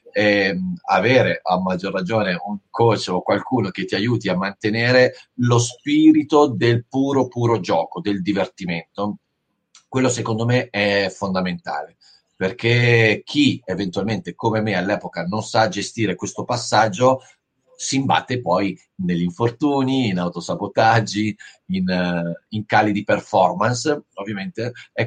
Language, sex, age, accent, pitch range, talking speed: Italian, male, 40-59, native, 100-125 Hz, 125 wpm